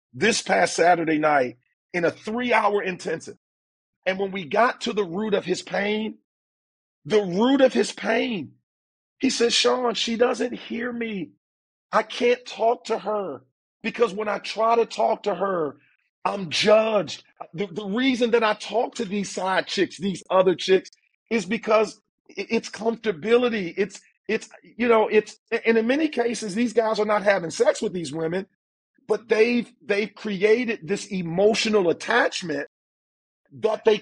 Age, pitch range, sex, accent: 40-59, 175-225 Hz, male, American